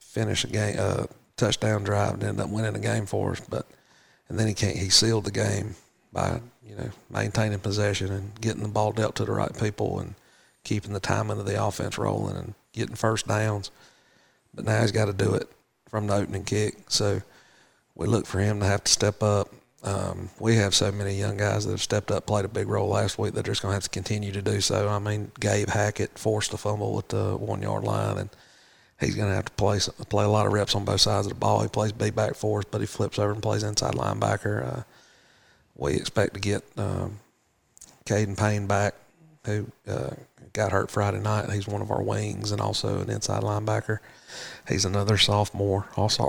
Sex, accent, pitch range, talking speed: male, American, 100-110 Hz, 220 wpm